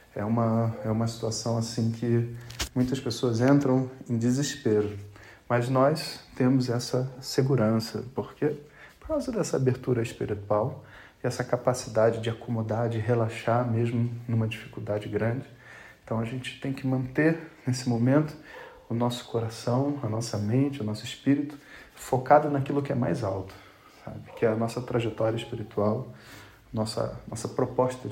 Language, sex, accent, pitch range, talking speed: Portuguese, male, Brazilian, 115-130 Hz, 145 wpm